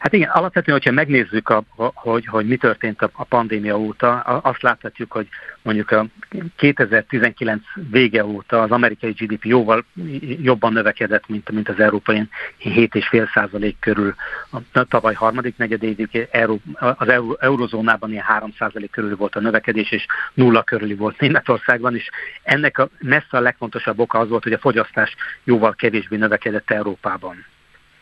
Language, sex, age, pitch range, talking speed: Hungarian, male, 60-79, 110-125 Hz, 145 wpm